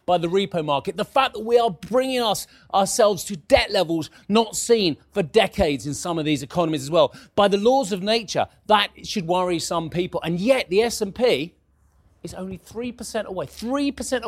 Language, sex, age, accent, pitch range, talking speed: English, male, 30-49, British, 160-210 Hz, 190 wpm